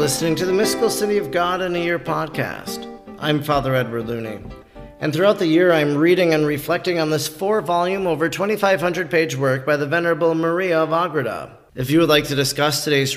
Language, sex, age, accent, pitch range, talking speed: English, male, 40-59, American, 145-180 Hz, 200 wpm